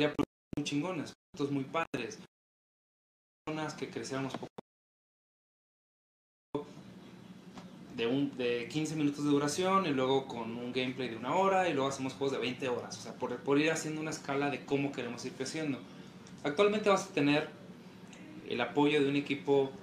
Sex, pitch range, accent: male, 135-170 Hz, Mexican